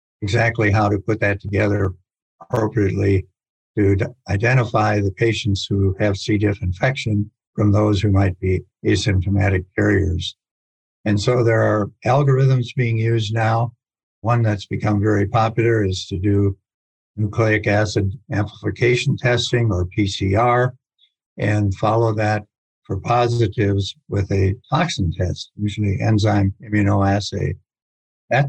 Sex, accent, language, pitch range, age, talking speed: male, American, English, 100-115 Hz, 60-79, 120 wpm